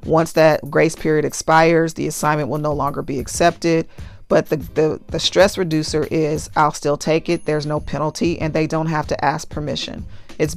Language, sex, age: English, female, 40-59